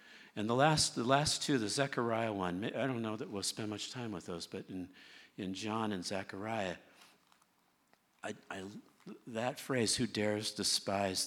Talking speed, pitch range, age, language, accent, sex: 170 wpm, 85-110 Hz, 50-69, English, American, male